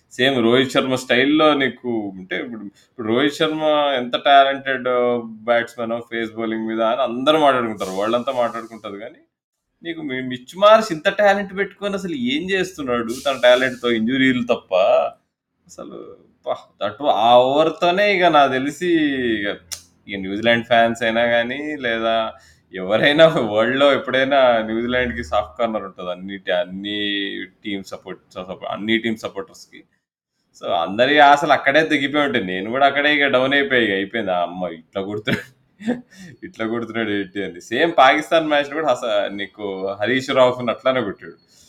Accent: native